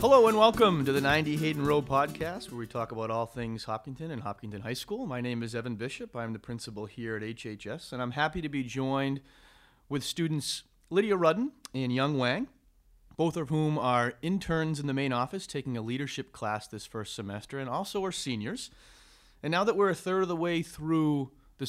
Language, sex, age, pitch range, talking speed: English, male, 40-59, 115-150 Hz, 205 wpm